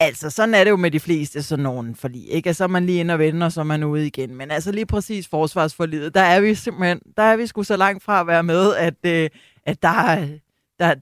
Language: Danish